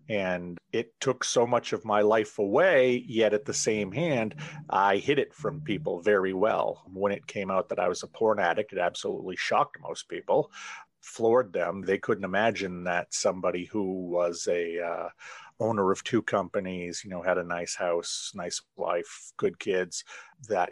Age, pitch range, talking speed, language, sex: 30-49, 95-125 Hz, 180 wpm, English, male